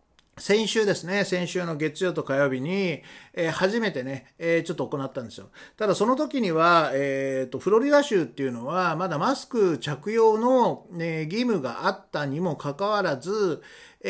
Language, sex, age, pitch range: Japanese, male, 40-59, 140-215 Hz